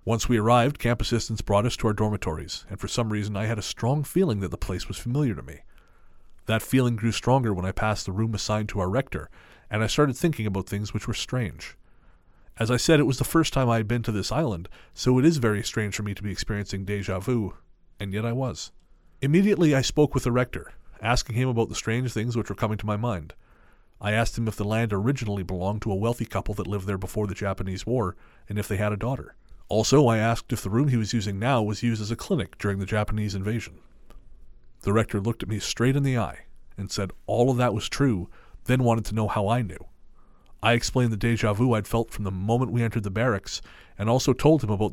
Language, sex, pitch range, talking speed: English, male, 100-120 Hz, 245 wpm